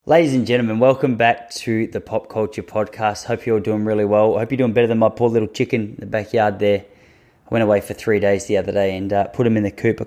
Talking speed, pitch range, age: 280 wpm, 105-125 Hz, 20-39